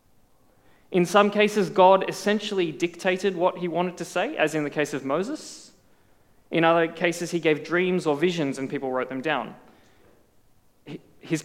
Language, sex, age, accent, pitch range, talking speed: English, male, 20-39, Australian, 140-185 Hz, 160 wpm